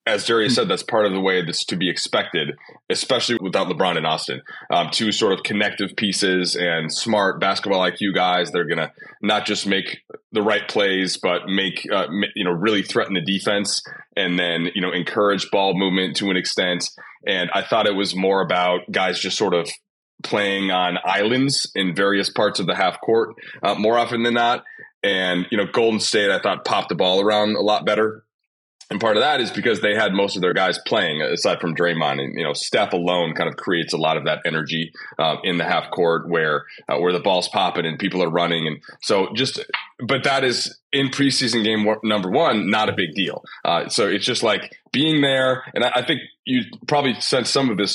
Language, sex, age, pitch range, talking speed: English, male, 20-39, 90-125 Hz, 215 wpm